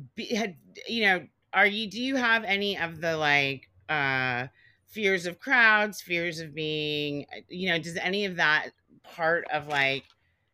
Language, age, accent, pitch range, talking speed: English, 30-49, American, 130-160 Hz, 165 wpm